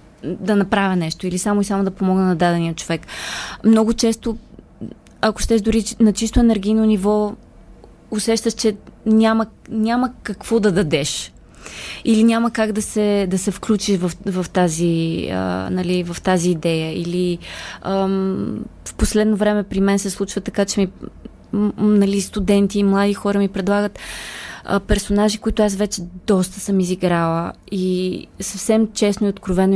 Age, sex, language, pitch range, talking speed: 20-39, female, Bulgarian, 185-215 Hz, 150 wpm